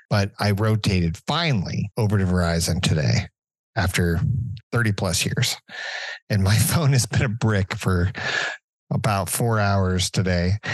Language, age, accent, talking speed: English, 40-59, American, 135 wpm